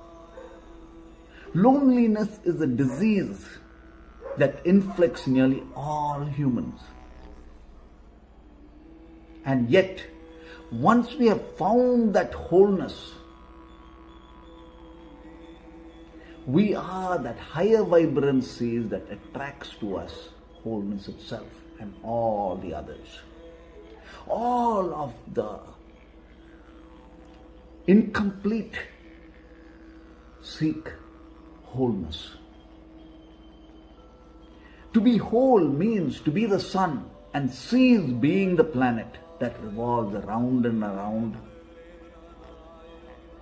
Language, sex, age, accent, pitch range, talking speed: English, male, 50-69, Indian, 110-185 Hz, 75 wpm